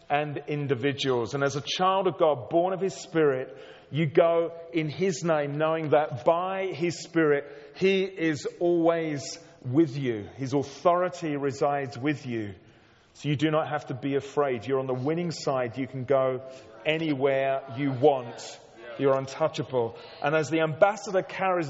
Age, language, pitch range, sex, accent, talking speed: 40-59, English, 120-155 Hz, male, British, 160 wpm